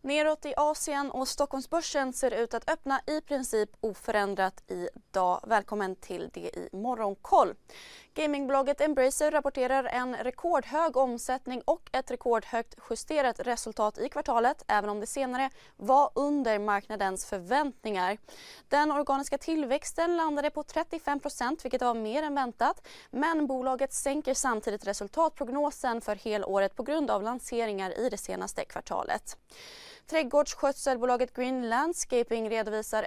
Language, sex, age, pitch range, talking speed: Swedish, female, 20-39, 220-290 Hz, 125 wpm